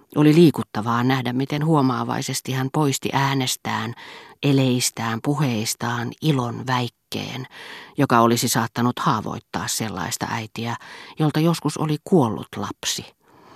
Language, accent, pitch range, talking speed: Finnish, native, 120-145 Hz, 100 wpm